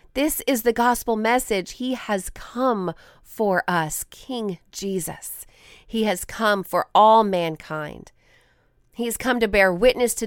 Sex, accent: female, American